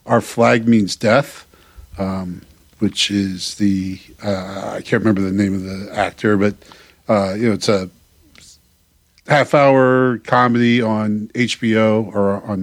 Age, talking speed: 50-69, 145 wpm